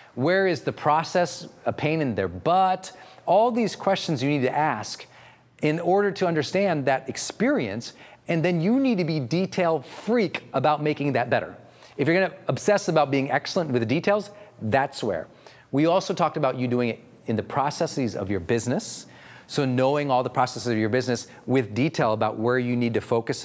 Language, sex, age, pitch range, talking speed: English, male, 40-59, 125-165 Hz, 190 wpm